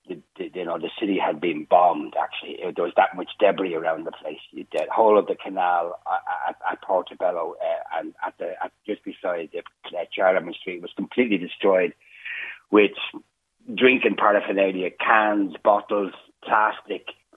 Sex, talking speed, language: male, 170 wpm, English